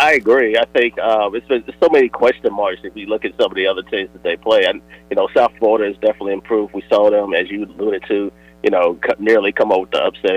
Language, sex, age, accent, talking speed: English, male, 30-49, American, 265 wpm